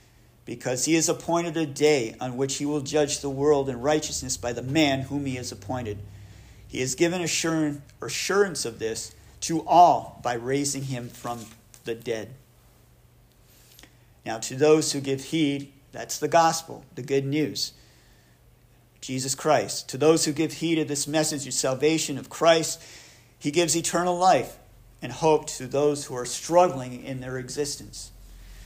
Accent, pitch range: American, 120-155 Hz